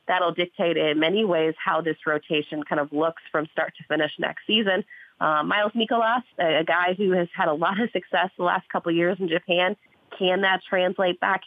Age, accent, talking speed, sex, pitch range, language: 30-49, American, 215 wpm, female, 160-190 Hz, English